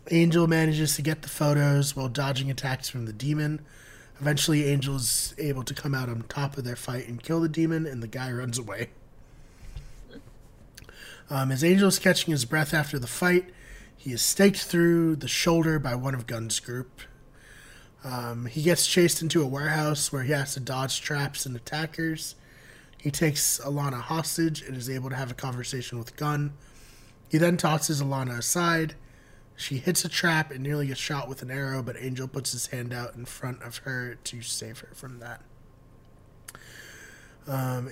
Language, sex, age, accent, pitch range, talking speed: English, male, 20-39, American, 120-155 Hz, 180 wpm